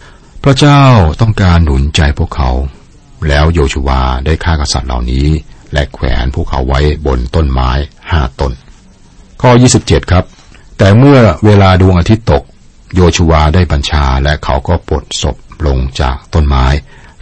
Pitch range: 70-85 Hz